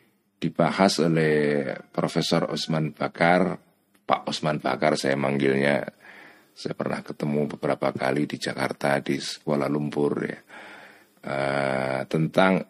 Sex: male